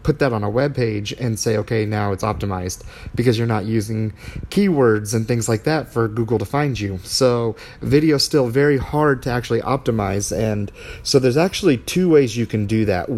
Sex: male